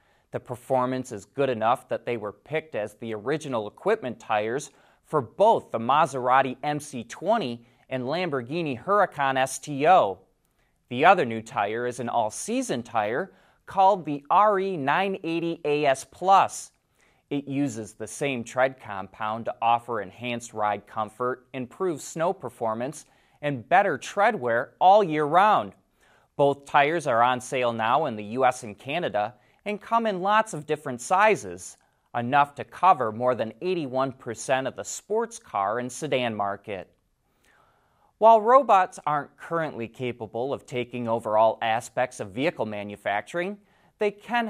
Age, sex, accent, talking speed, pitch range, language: 30-49, male, American, 135 wpm, 120-165 Hz, English